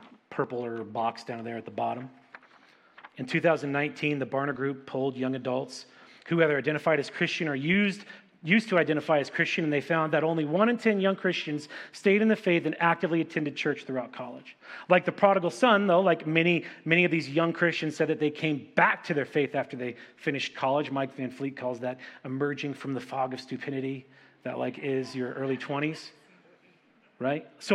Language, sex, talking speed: English, male, 195 wpm